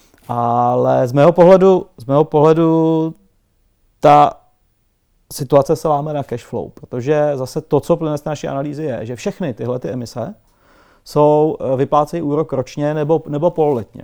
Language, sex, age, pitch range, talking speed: Czech, male, 30-49, 125-150 Hz, 150 wpm